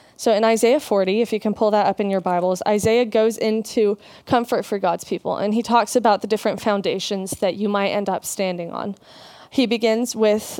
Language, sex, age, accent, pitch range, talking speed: English, female, 20-39, American, 195-230 Hz, 210 wpm